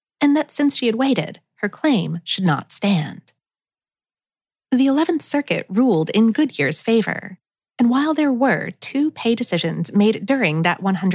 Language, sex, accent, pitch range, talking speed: English, female, American, 180-260 Hz, 150 wpm